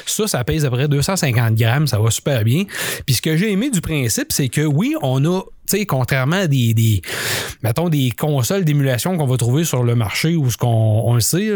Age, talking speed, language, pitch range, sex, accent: 30-49, 230 wpm, French, 120-160 Hz, male, Canadian